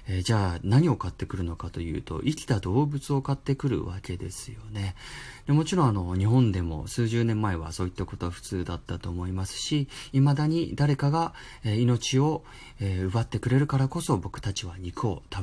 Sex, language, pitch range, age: male, Japanese, 95-130 Hz, 30-49